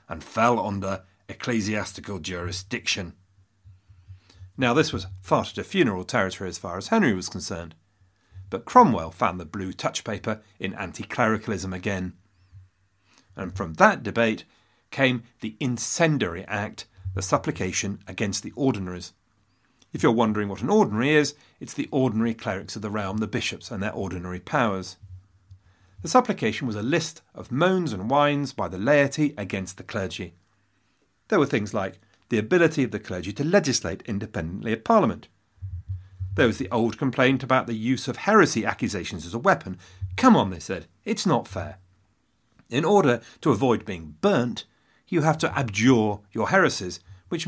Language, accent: English, British